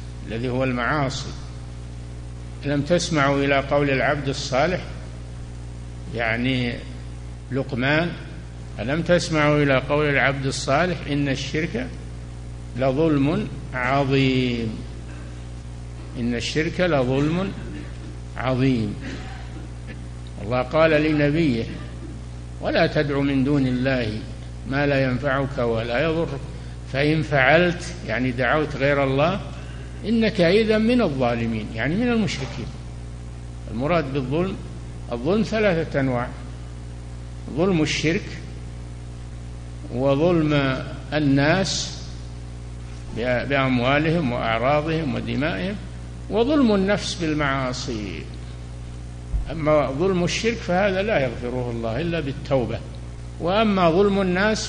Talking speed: 85 wpm